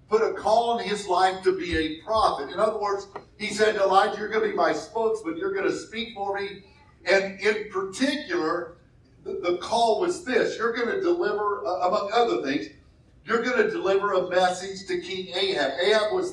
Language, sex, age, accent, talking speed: English, male, 50-69, American, 200 wpm